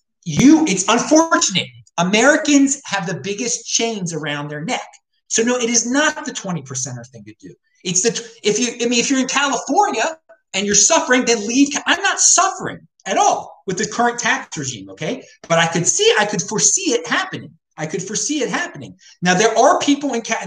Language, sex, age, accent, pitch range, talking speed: English, male, 30-49, American, 160-245 Hz, 195 wpm